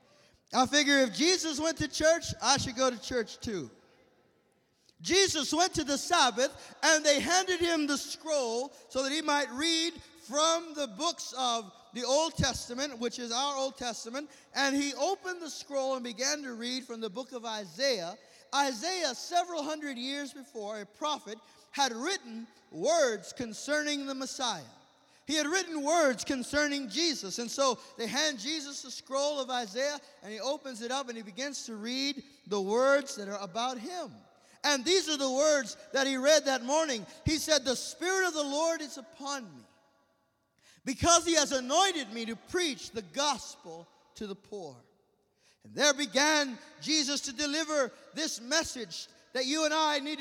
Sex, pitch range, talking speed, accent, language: male, 255-305 Hz, 170 wpm, American, English